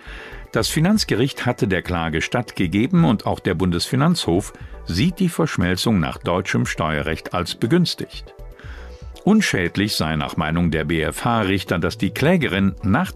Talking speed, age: 130 wpm, 50-69